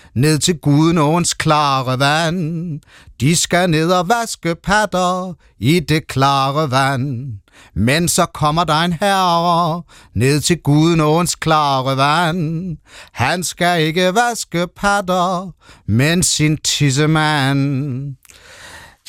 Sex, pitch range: male, 125-165 Hz